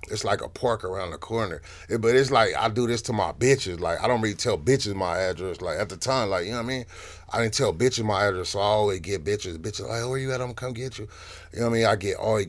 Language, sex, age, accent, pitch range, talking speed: English, male, 30-49, American, 95-120 Hz, 315 wpm